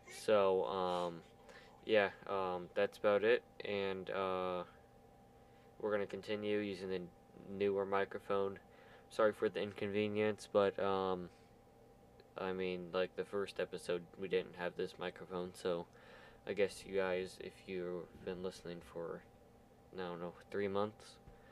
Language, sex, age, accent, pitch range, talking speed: English, male, 20-39, American, 95-100 Hz, 135 wpm